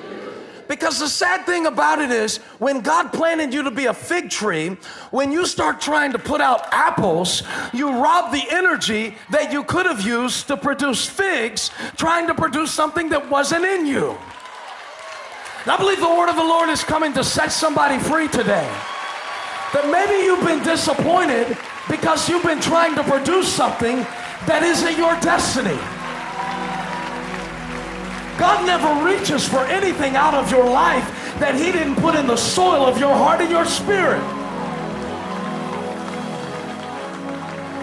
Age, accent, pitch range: 40-59, American, 265-330 Hz